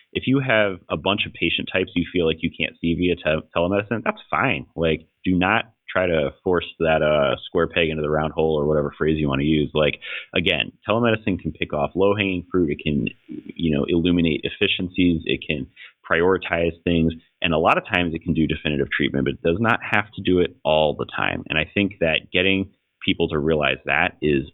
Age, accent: 30-49, American